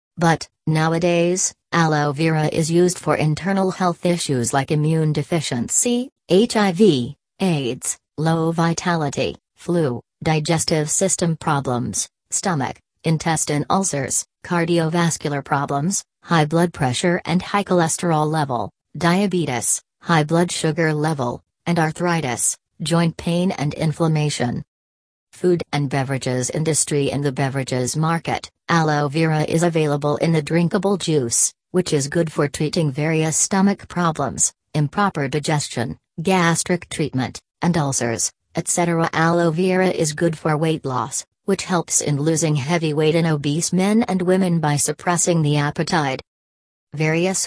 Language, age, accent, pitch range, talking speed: English, 40-59, American, 145-170 Hz, 125 wpm